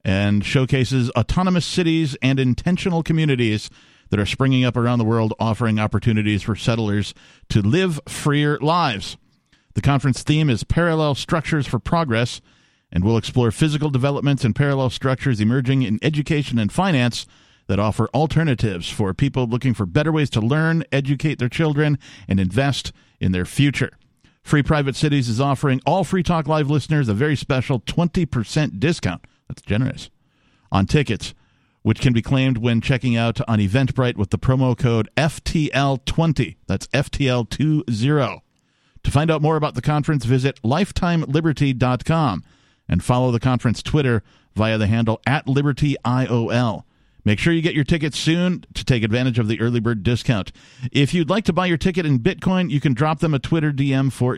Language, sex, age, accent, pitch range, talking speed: English, male, 50-69, American, 115-150 Hz, 165 wpm